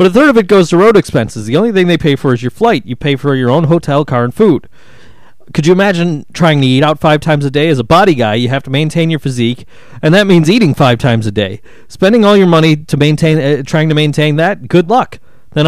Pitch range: 130-165 Hz